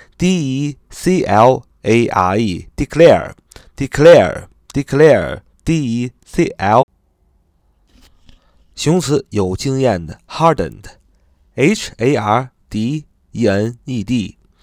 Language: Chinese